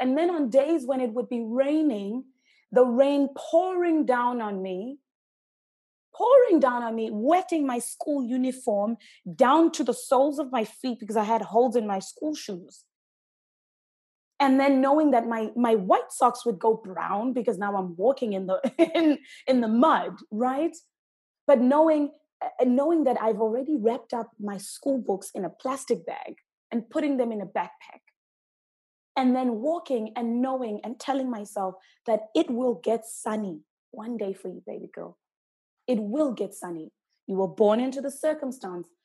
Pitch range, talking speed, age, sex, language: 210-275 Hz, 170 wpm, 20-39, female, English